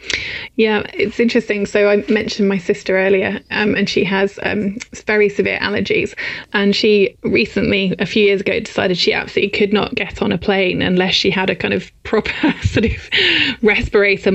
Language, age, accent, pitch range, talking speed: English, 20-39, British, 195-225 Hz, 180 wpm